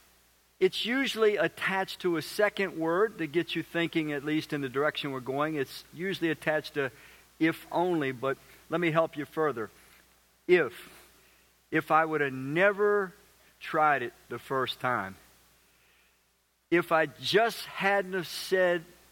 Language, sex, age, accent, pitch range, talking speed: English, male, 50-69, American, 135-180 Hz, 150 wpm